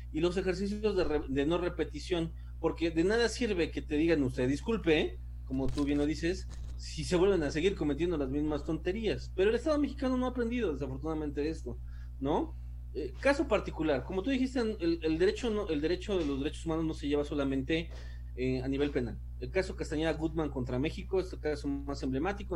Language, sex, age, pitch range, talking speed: Spanish, male, 30-49, 130-180 Hz, 190 wpm